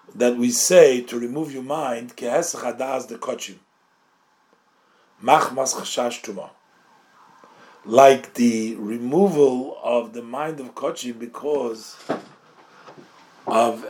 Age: 40-59